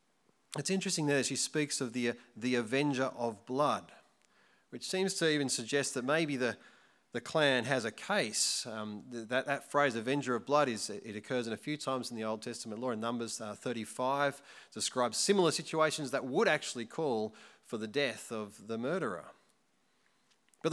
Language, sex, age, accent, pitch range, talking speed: English, male, 30-49, Australian, 110-150 Hz, 175 wpm